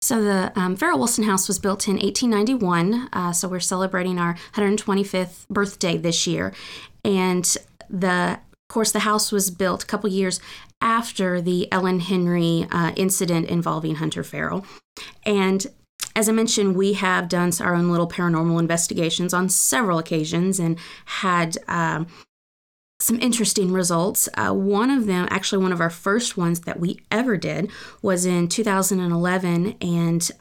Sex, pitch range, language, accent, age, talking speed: female, 170-200 Hz, English, American, 30-49, 150 wpm